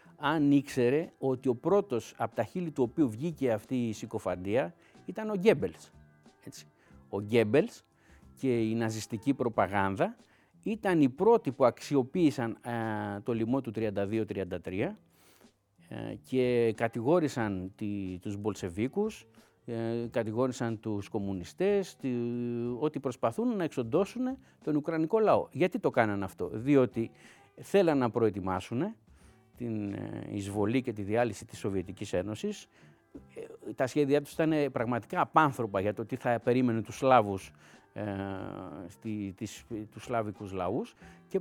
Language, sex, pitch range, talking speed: Greek, male, 105-165 Hz, 125 wpm